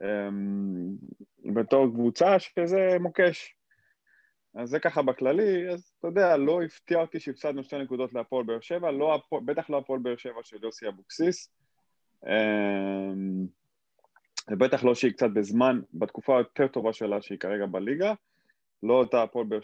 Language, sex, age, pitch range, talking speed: Hebrew, male, 20-39, 105-140 Hz, 115 wpm